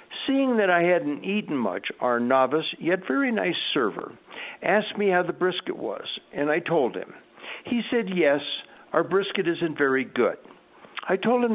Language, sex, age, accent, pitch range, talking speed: English, male, 60-79, American, 120-185 Hz, 170 wpm